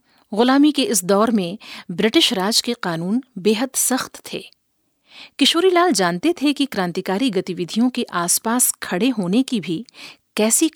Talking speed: 140 wpm